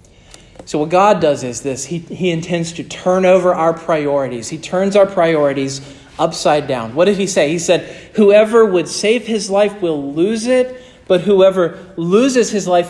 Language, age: English, 40-59